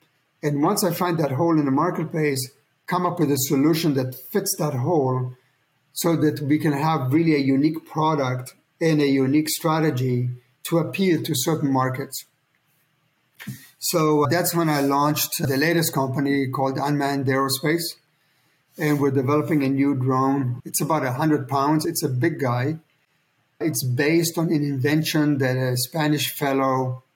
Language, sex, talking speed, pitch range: English, male, 160 wpm, 135-155 Hz